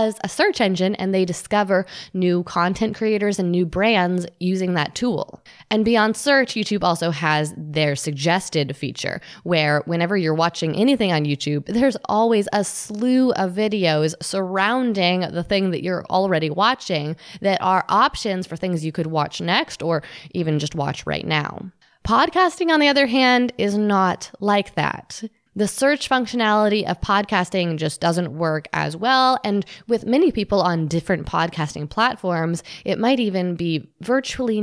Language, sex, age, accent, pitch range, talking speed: English, female, 20-39, American, 170-220 Hz, 160 wpm